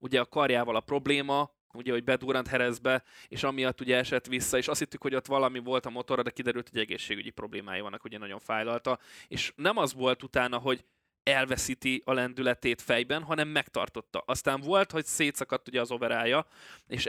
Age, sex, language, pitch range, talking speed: 20-39, male, Hungarian, 125-145 Hz, 185 wpm